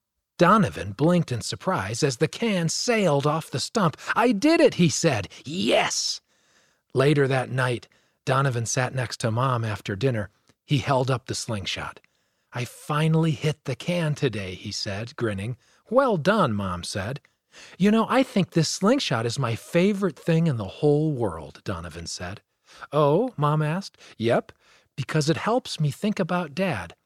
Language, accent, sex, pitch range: English, American, male, 120-185 Hz